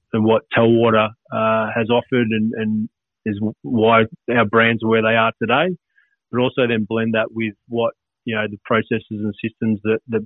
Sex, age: male, 30-49